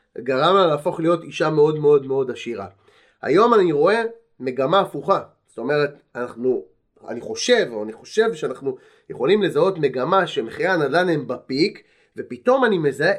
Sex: male